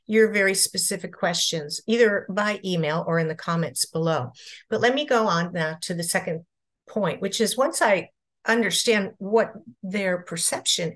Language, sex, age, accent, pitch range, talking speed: English, female, 50-69, American, 175-240 Hz, 165 wpm